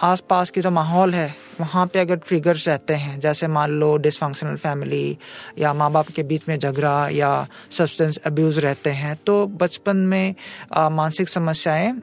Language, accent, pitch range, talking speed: Hindi, native, 165-205 Hz, 170 wpm